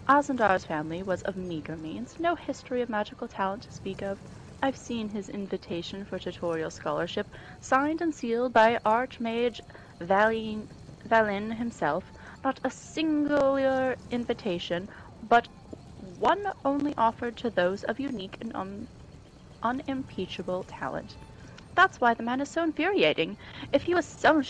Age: 30-49